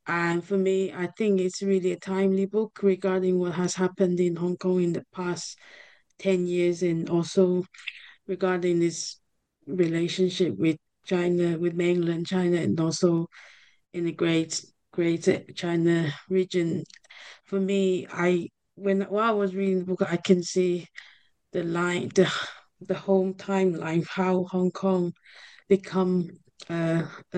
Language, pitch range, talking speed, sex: English, 170-190 Hz, 140 wpm, female